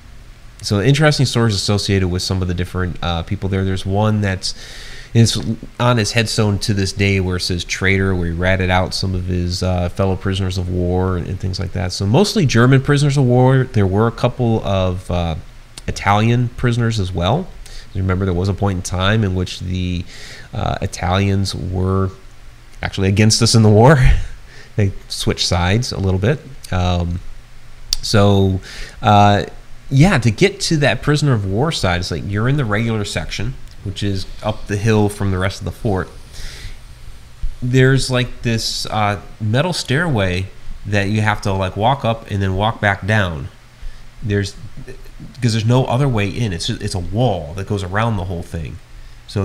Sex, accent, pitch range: male, American, 95-115 Hz